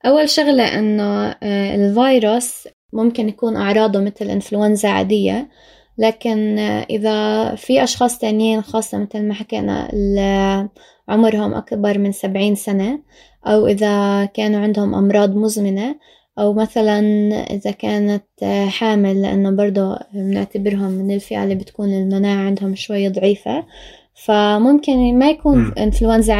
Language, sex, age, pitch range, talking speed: Arabic, female, 20-39, 205-235 Hz, 115 wpm